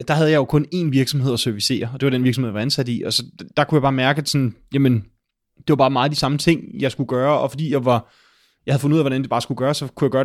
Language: Danish